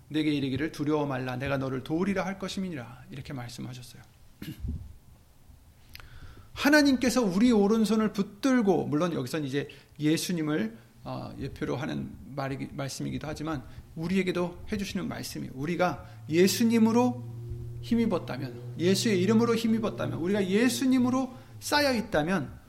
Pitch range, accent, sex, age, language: 125-195 Hz, native, male, 40-59, Korean